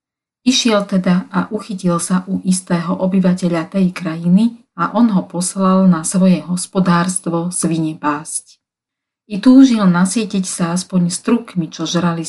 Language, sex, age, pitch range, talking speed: Slovak, female, 40-59, 160-190 Hz, 130 wpm